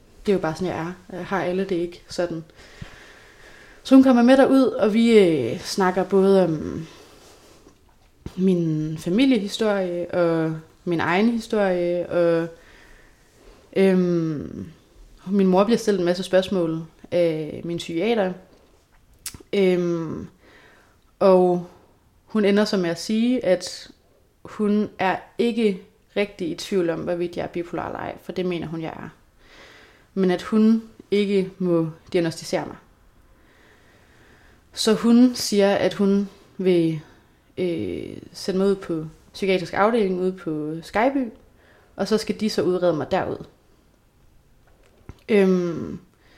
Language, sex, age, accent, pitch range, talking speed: Danish, female, 30-49, native, 170-205 Hz, 135 wpm